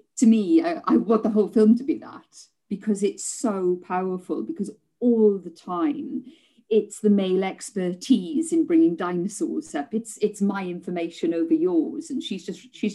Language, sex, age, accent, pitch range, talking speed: English, female, 40-59, British, 195-305 Hz, 165 wpm